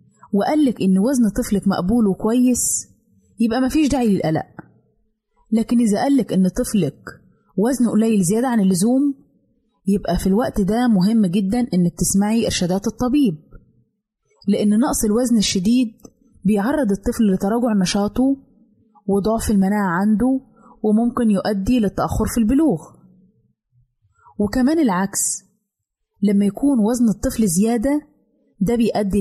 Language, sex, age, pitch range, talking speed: Arabic, female, 20-39, 190-245 Hz, 115 wpm